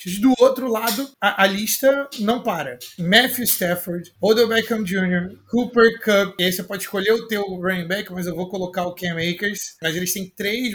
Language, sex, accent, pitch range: Portuguese, male, Brazilian, 175-225 Hz